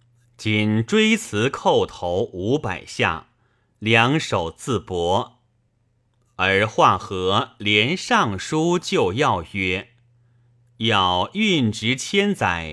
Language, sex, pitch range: Chinese, male, 110-135 Hz